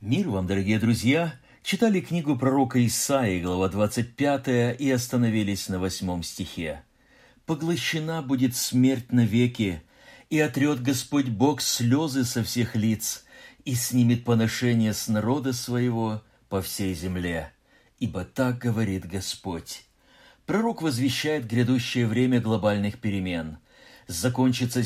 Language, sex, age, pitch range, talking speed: Russian, male, 50-69, 105-135 Hz, 115 wpm